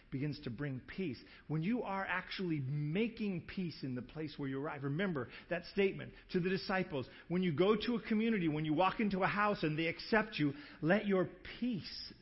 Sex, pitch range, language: male, 140-190 Hz, English